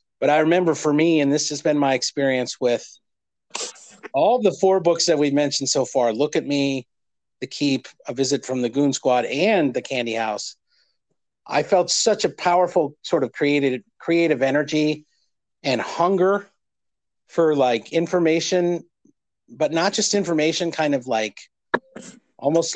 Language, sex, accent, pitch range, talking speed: English, male, American, 135-175 Hz, 155 wpm